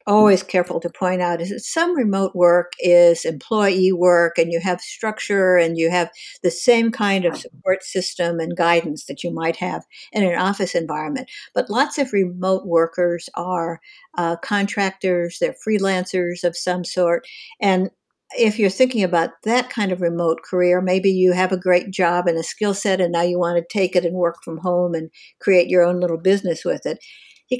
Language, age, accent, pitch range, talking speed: English, 60-79, American, 175-205 Hz, 195 wpm